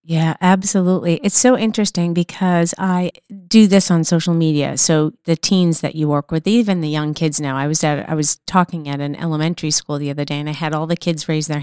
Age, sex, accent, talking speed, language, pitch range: 30-49, female, American, 230 wpm, English, 150-170 Hz